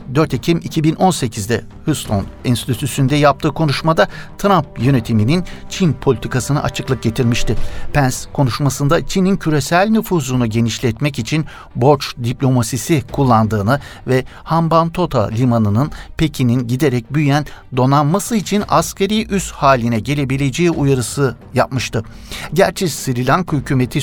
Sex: male